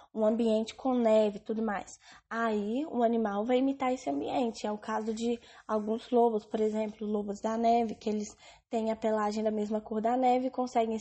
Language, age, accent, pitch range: English, 10-29, Brazilian, 220-260 Hz